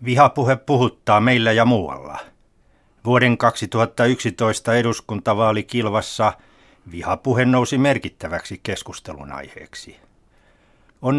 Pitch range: 95-120 Hz